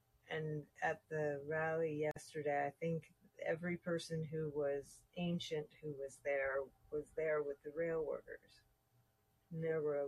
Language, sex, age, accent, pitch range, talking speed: English, female, 40-59, American, 135-175 Hz, 150 wpm